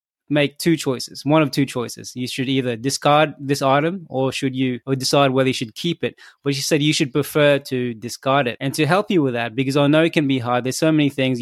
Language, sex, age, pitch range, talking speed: English, male, 20-39, 125-145 Hz, 260 wpm